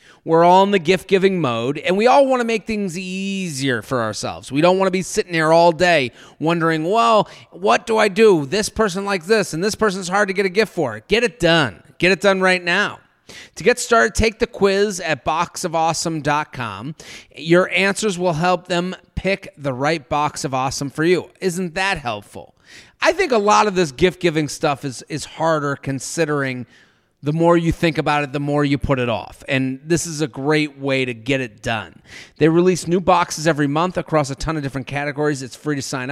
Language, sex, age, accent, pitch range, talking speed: English, male, 30-49, American, 145-195 Hz, 210 wpm